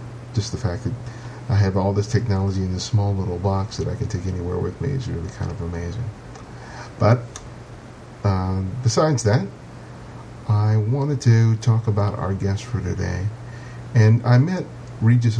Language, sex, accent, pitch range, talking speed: English, male, American, 100-120 Hz, 170 wpm